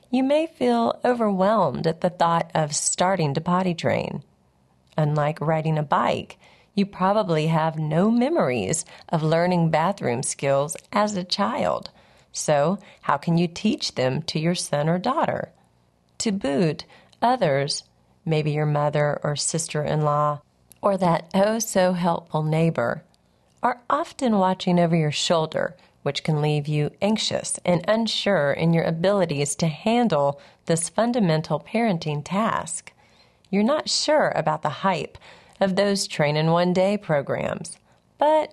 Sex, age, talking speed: female, 40-59, 130 wpm